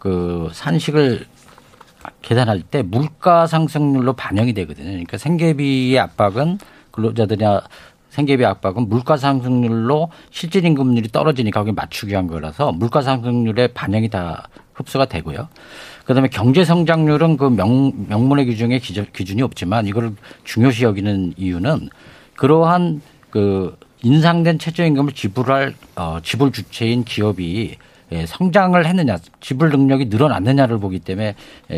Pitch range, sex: 100-145 Hz, male